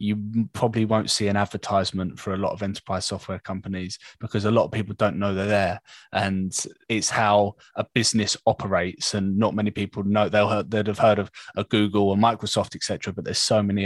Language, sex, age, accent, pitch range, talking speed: English, male, 20-39, British, 100-125 Hz, 210 wpm